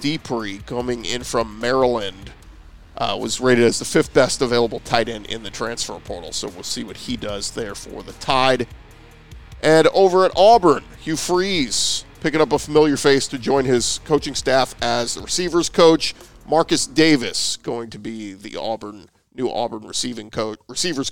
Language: English